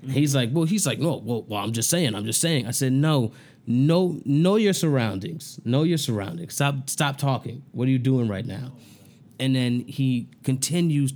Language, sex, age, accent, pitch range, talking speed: English, male, 20-39, American, 125-170 Hz, 200 wpm